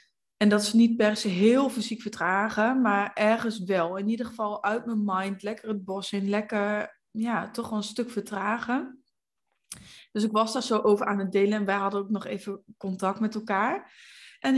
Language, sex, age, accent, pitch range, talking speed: Dutch, female, 20-39, Dutch, 205-250 Hz, 195 wpm